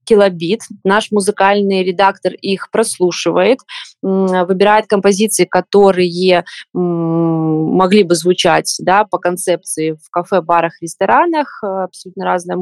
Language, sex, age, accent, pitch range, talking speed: Russian, female, 20-39, native, 175-210 Hz, 100 wpm